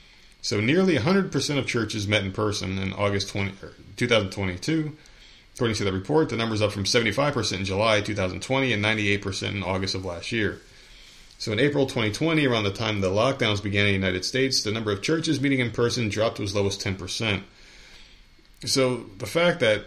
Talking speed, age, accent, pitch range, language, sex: 185 wpm, 30-49, American, 95-125 Hz, English, male